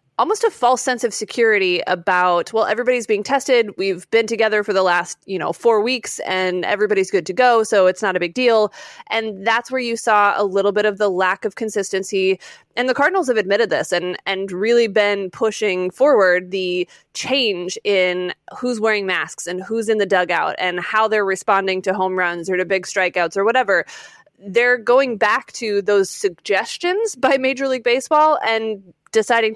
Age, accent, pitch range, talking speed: 20-39, American, 190-240 Hz, 190 wpm